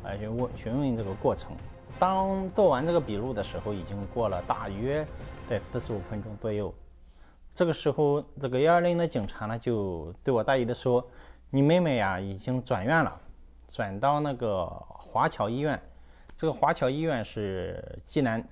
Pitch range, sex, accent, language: 85-130 Hz, male, native, Chinese